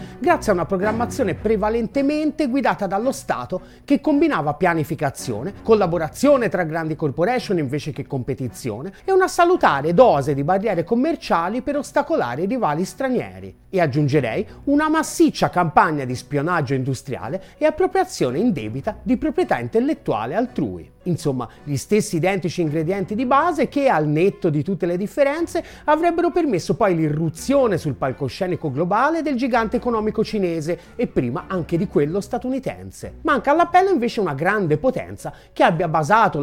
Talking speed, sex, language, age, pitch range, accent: 140 wpm, male, Italian, 30-49, 165-265 Hz, native